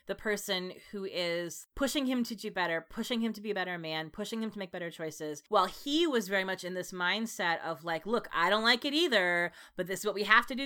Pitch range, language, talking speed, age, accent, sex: 170-215 Hz, English, 260 wpm, 20-39, American, female